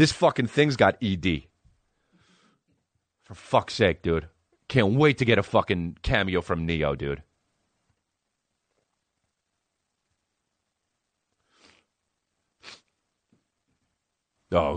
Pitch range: 85-115 Hz